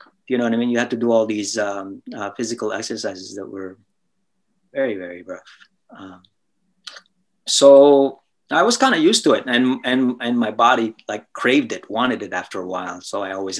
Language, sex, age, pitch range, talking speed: English, male, 30-49, 100-125 Hz, 200 wpm